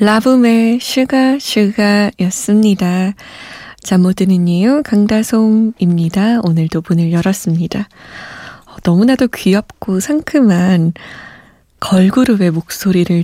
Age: 20-39